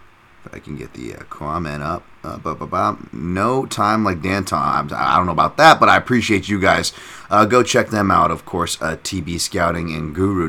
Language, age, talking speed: English, 30-49, 205 wpm